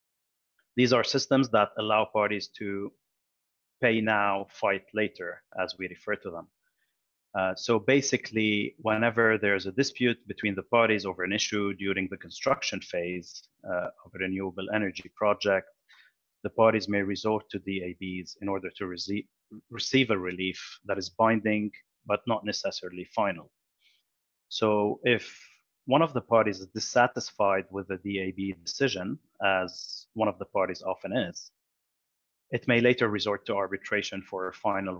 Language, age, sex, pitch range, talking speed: English, 30-49, male, 95-110 Hz, 150 wpm